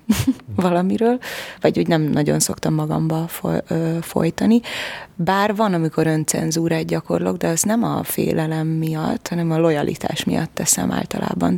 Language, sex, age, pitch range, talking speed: Hungarian, female, 20-39, 150-180 Hz, 130 wpm